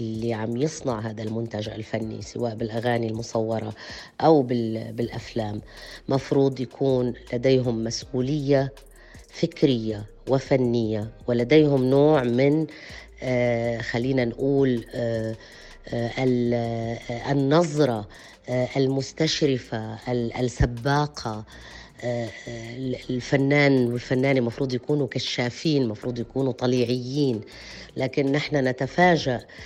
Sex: female